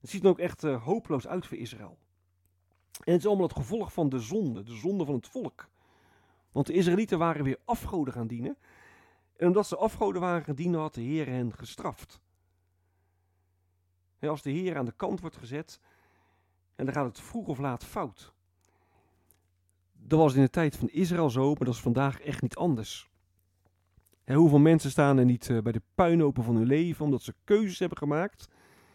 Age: 40-59